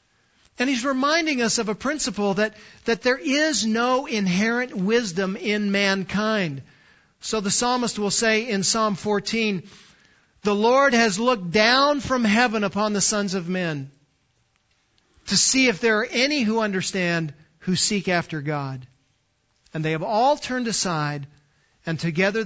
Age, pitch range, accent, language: 50-69, 180-230 Hz, American, English